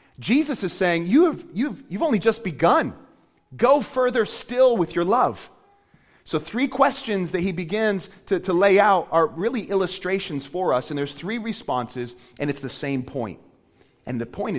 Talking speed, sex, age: 170 wpm, male, 30-49